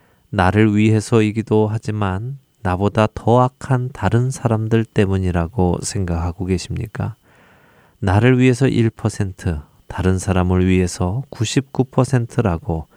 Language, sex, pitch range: Korean, male, 90-115 Hz